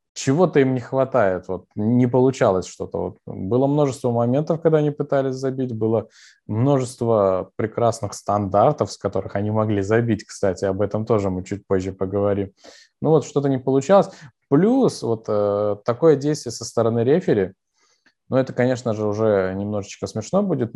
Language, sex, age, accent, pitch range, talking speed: Russian, male, 20-39, native, 105-135 Hz, 145 wpm